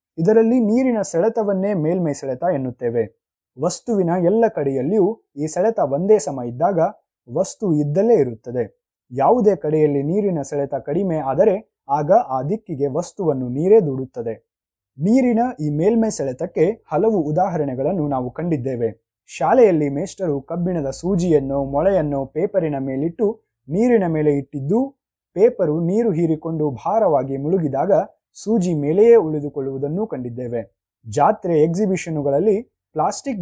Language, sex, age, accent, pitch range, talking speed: Kannada, male, 20-39, native, 140-205 Hz, 100 wpm